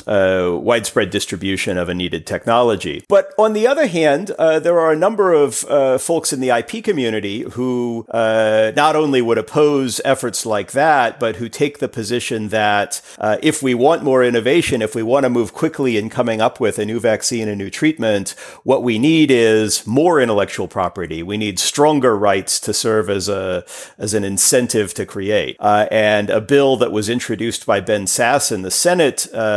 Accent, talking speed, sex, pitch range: American, 190 wpm, male, 100-130 Hz